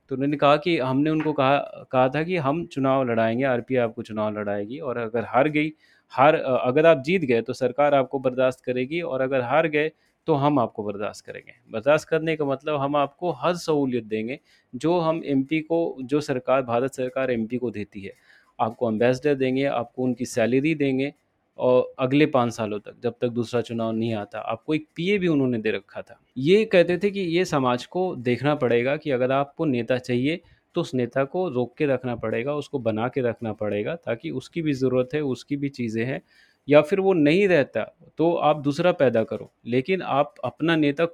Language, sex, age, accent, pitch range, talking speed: Hindi, male, 30-49, native, 120-155 Hz, 200 wpm